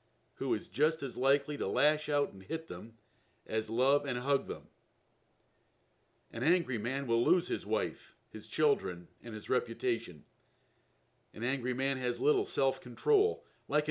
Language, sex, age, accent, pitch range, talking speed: English, male, 50-69, American, 115-150 Hz, 150 wpm